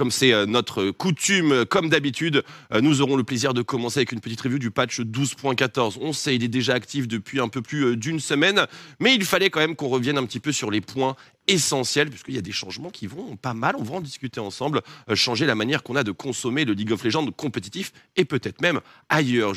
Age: 30-49